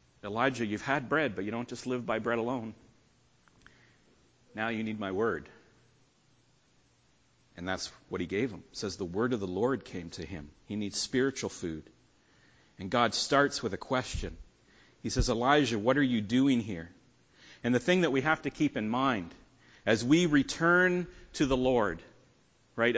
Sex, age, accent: male, 40-59, American